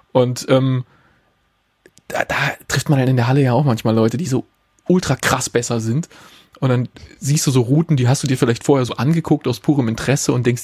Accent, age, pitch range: German, 30-49, 135-175 Hz